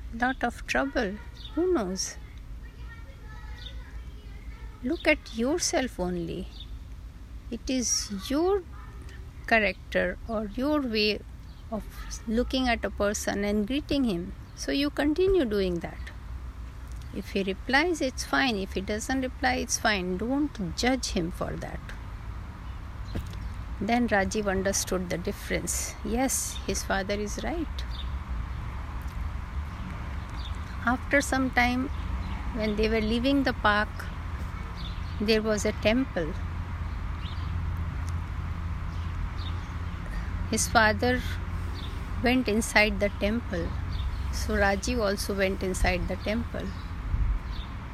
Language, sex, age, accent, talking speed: Hindi, female, 50-69, native, 100 wpm